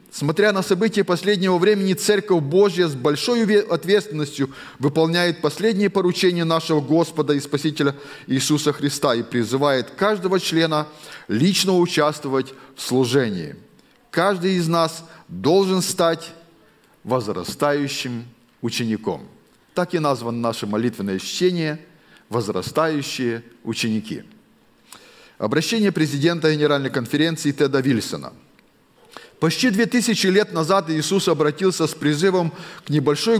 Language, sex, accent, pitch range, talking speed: Russian, male, native, 145-190 Hz, 105 wpm